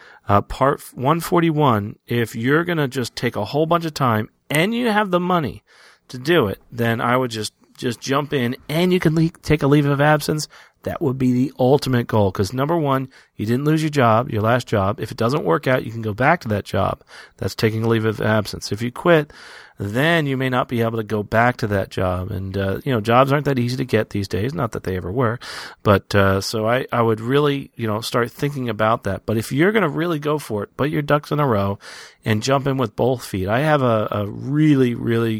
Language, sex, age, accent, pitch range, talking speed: English, male, 40-59, American, 100-135 Hz, 245 wpm